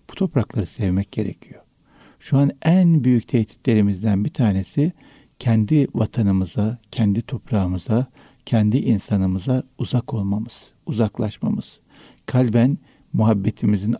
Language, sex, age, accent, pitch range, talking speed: Turkish, male, 60-79, native, 105-130 Hz, 90 wpm